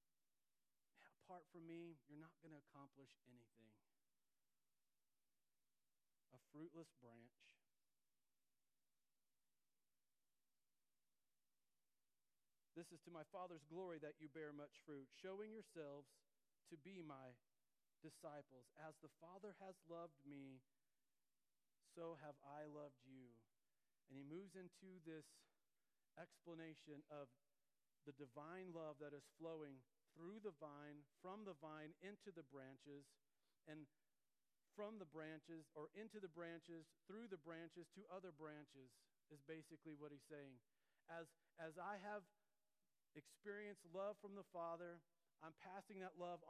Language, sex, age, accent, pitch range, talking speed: English, male, 40-59, American, 145-175 Hz, 120 wpm